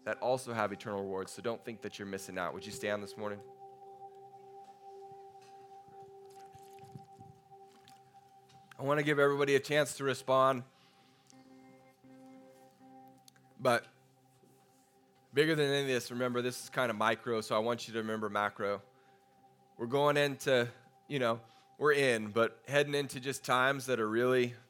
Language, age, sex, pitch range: English, 20-39, male, 115-140 Hz